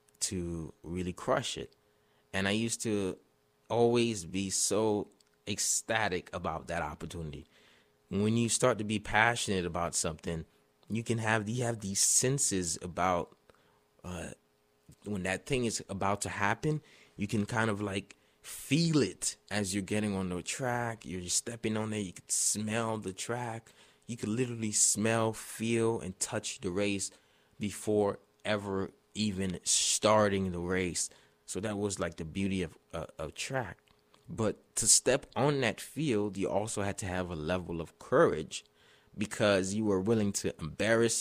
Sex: male